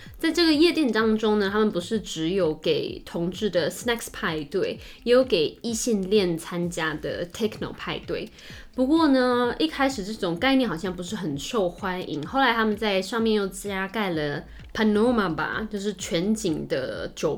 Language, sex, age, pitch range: Chinese, female, 20-39, 180-235 Hz